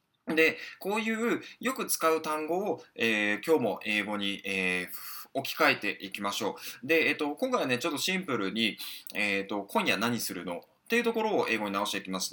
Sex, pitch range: male, 105-175 Hz